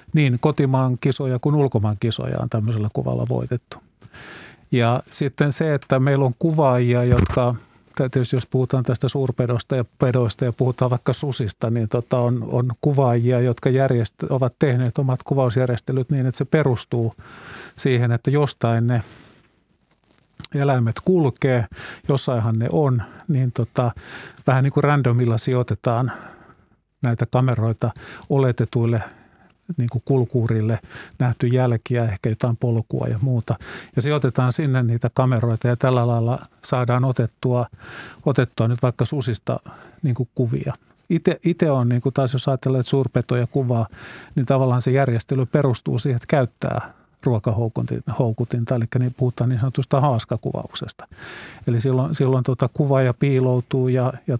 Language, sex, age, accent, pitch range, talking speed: Finnish, male, 50-69, native, 120-135 Hz, 130 wpm